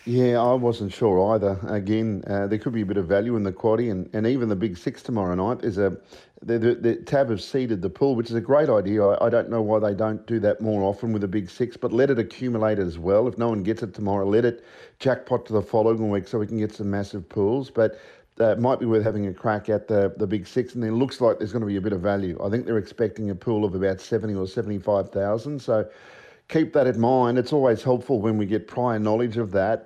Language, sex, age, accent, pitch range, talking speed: English, male, 50-69, Australian, 105-125 Hz, 270 wpm